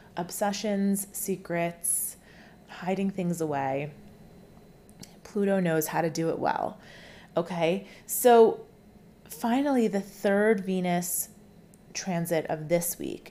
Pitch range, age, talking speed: 165-195 Hz, 30-49, 100 wpm